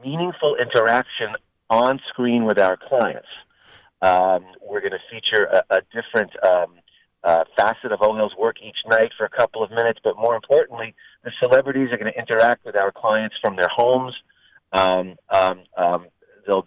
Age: 40-59